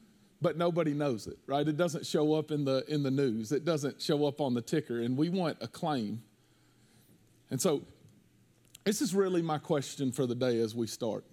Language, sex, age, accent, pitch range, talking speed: English, male, 40-59, American, 130-165 Hz, 205 wpm